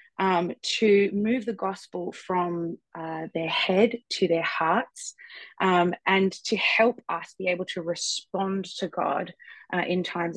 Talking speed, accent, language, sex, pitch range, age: 150 wpm, Australian, English, female, 175-220 Hz, 20-39